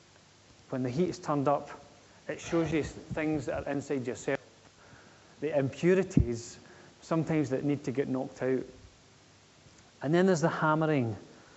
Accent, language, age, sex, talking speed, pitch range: British, English, 30-49, male, 145 wpm, 130-170 Hz